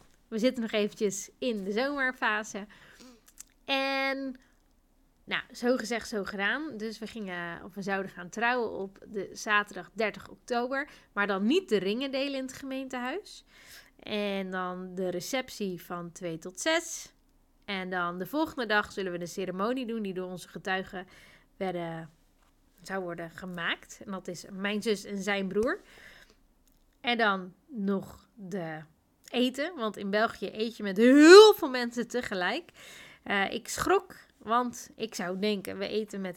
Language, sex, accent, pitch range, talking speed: Dutch, female, Dutch, 195-255 Hz, 155 wpm